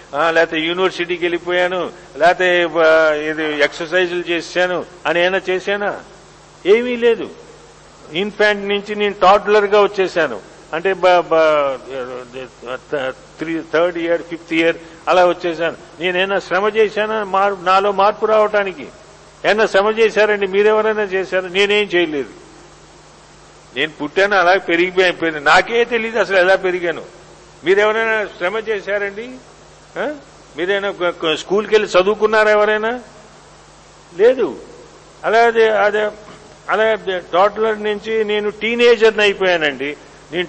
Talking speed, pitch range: 95 wpm, 175-215 Hz